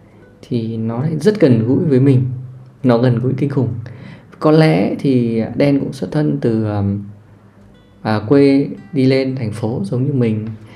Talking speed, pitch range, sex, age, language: 160 wpm, 110-140 Hz, male, 20-39, Vietnamese